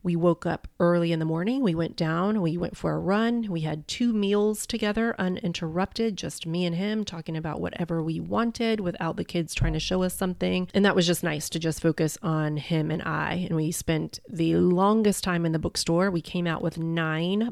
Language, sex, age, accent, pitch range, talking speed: English, female, 30-49, American, 165-190 Hz, 220 wpm